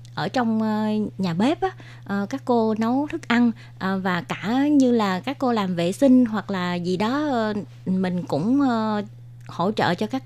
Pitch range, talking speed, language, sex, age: 175-230 Hz, 165 wpm, Vietnamese, female, 20-39